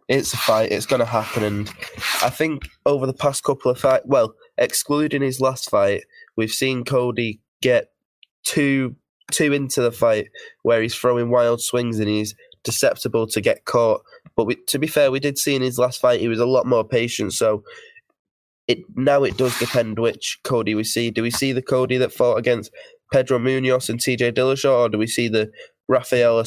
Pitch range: 110-130 Hz